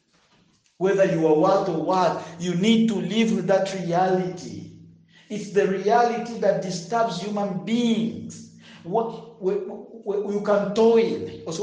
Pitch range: 160-220 Hz